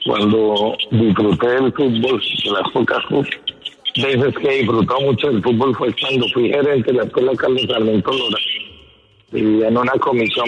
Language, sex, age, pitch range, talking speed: Spanish, male, 60-79, 115-180 Hz, 150 wpm